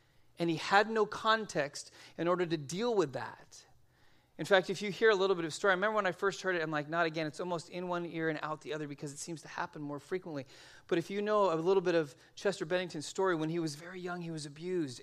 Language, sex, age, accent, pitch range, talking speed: English, male, 40-59, American, 160-195 Hz, 270 wpm